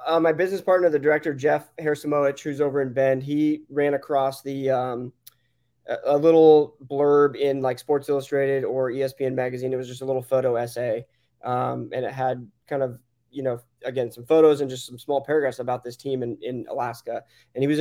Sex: male